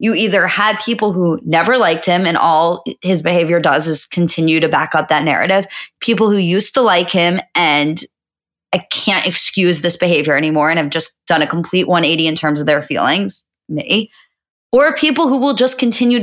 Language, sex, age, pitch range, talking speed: English, female, 20-39, 170-225 Hz, 190 wpm